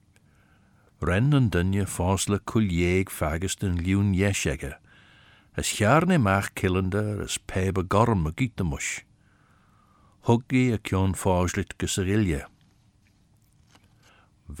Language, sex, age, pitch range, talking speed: English, male, 60-79, 95-125 Hz, 100 wpm